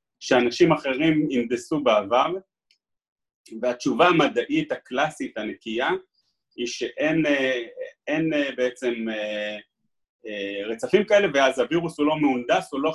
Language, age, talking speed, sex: Hebrew, 30-49, 105 wpm, male